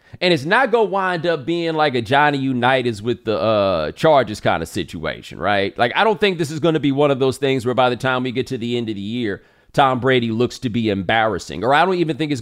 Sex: male